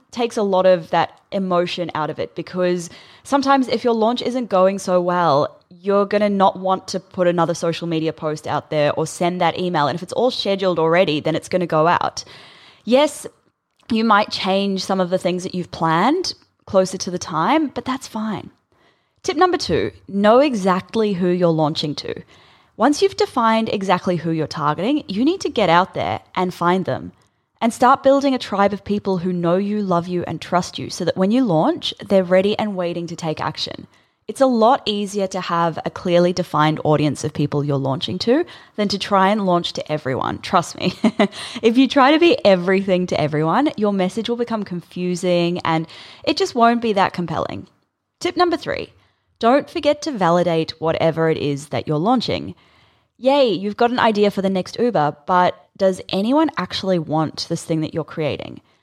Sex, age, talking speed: female, 10-29, 195 wpm